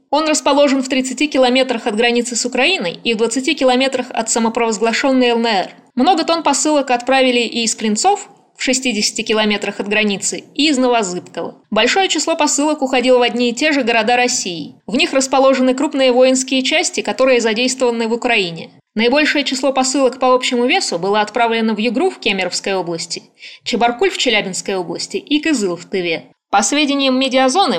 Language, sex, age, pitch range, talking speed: Russian, female, 20-39, 220-265 Hz, 165 wpm